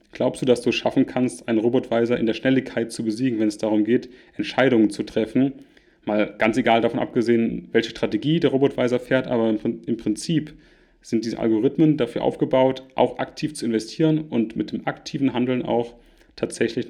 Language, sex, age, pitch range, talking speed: German, male, 30-49, 115-155 Hz, 175 wpm